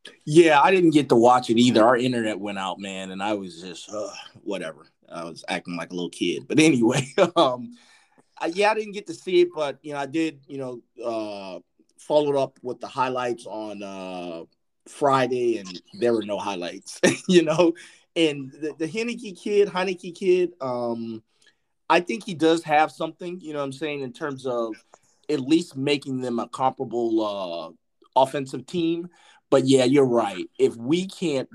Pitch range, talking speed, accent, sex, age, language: 120-175 Hz, 185 wpm, American, male, 30-49, English